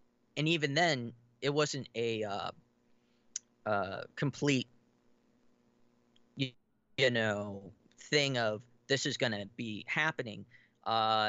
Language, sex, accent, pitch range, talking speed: English, male, American, 115-135 Hz, 105 wpm